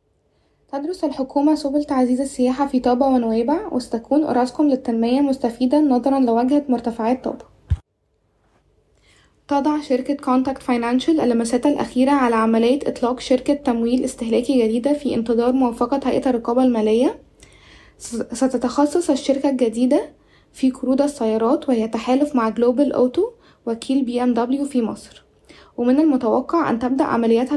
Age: 10-29